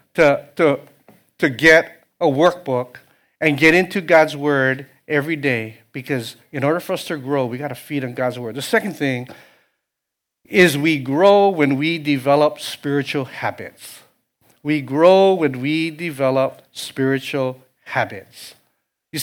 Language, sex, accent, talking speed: English, male, American, 145 wpm